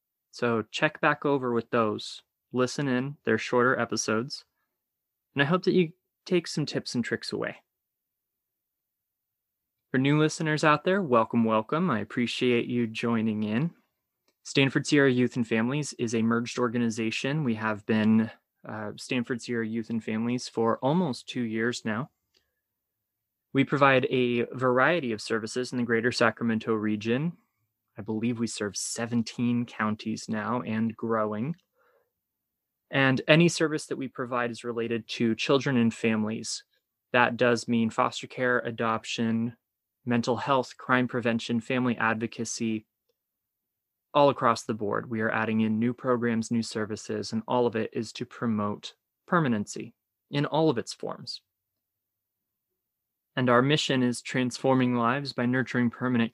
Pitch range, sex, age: 110-130 Hz, male, 20-39